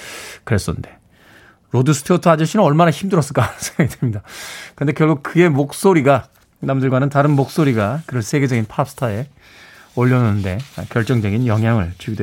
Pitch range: 130-190 Hz